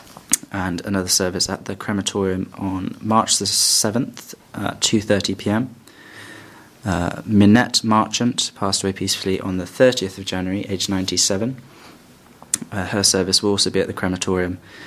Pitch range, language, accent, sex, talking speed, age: 95-110 Hz, English, British, male, 135 wpm, 20-39